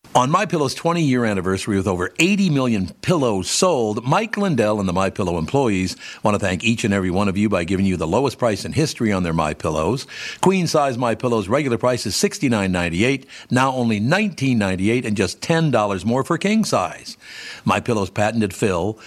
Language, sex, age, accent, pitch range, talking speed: English, male, 60-79, American, 100-130 Hz, 175 wpm